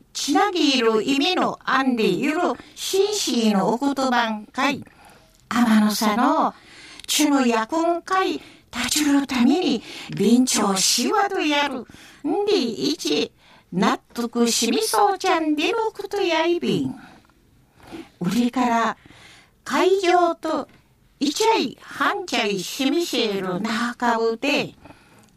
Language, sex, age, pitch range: Japanese, female, 50-69, 235-350 Hz